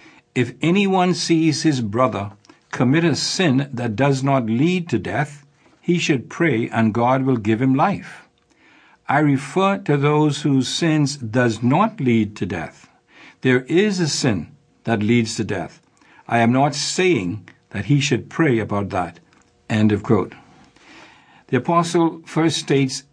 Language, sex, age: English, male, 60-79